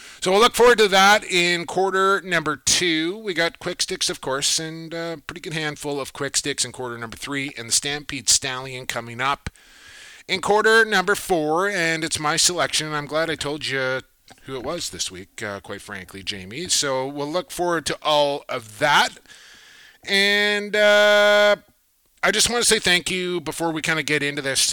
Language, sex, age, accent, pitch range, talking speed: English, male, 30-49, American, 120-175 Hz, 195 wpm